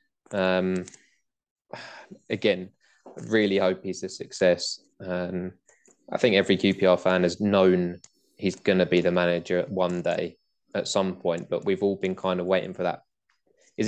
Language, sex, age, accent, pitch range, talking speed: English, male, 20-39, British, 90-100 Hz, 155 wpm